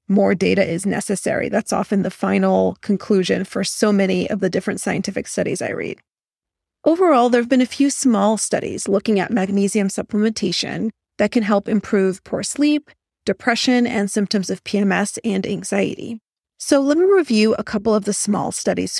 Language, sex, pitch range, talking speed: English, female, 200-245 Hz, 170 wpm